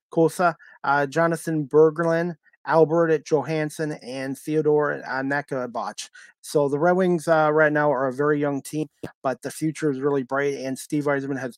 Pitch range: 130-150 Hz